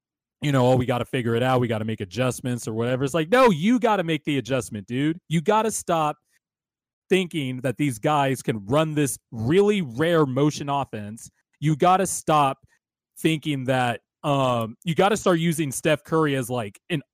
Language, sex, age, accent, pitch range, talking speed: English, male, 30-49, American, 120-155 Hz, 205 wpm